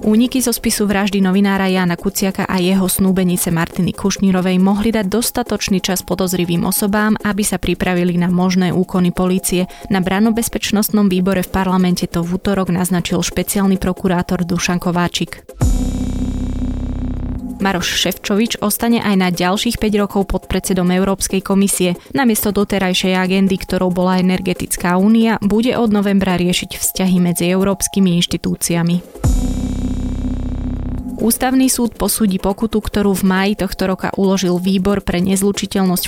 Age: 20-39